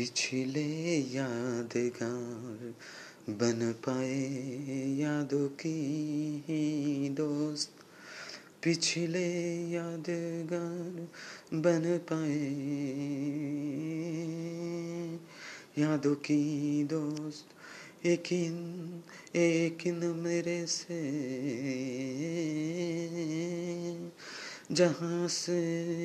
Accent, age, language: native, 30-49, Bengali